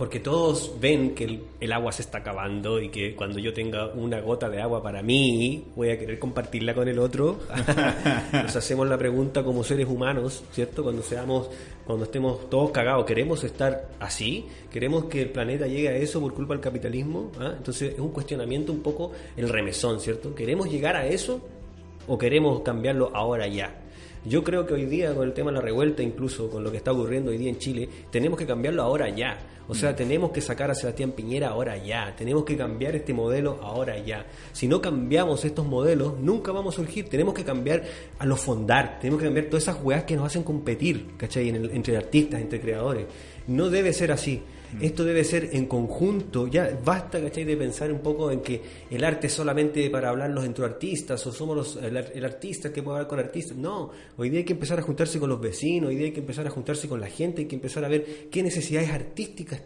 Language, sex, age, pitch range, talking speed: Spanish, male, 30-49, 120-155 Hz, 215 wpm